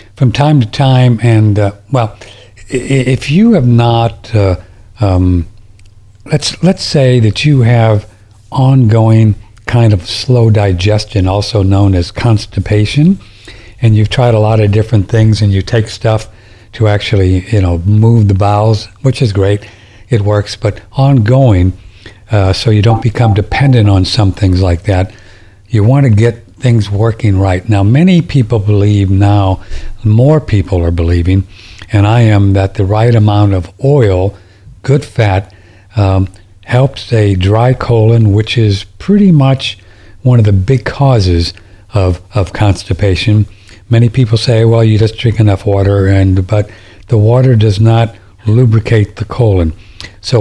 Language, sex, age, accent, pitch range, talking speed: English, male, 60-79, American, 100-120 Hz, 150 wpm